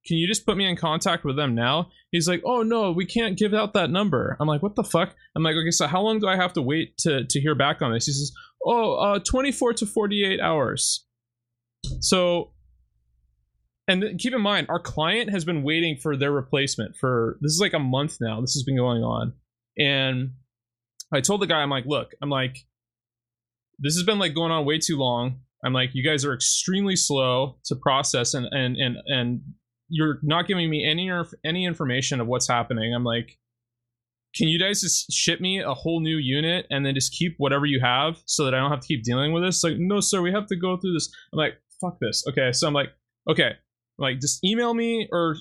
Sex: male